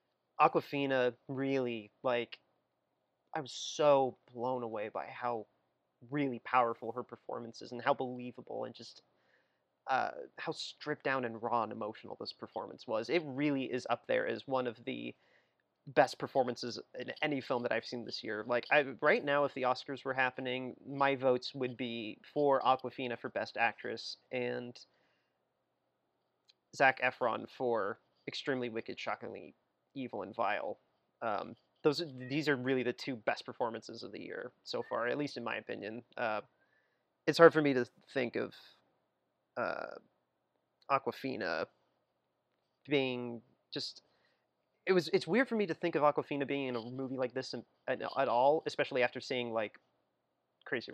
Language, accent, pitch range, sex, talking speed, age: English, American, 120-145 Hz, male, 160 wpm, 30-49